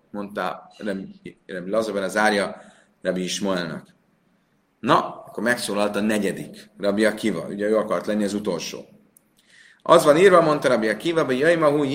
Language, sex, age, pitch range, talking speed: Hungarian, male, 30-49, 100-125 Hz, 135 wpm